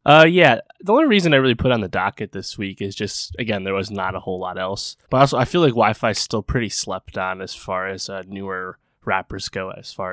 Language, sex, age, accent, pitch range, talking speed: English, male, 20-39, American, 95-115 Hz, 255 wpm